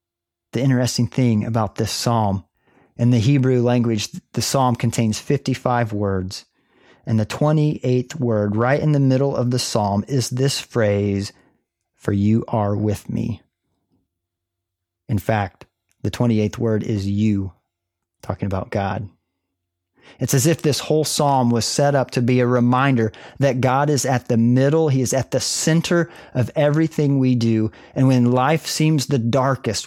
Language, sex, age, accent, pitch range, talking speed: English, male, 40-59, American, 110-140 Hz, 155 wpm